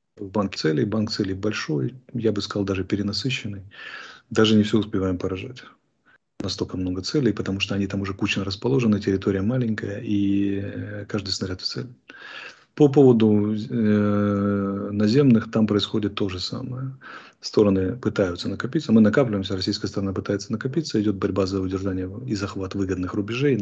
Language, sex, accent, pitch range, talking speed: Russian, male, native, 95-110 Hz, 145 wpm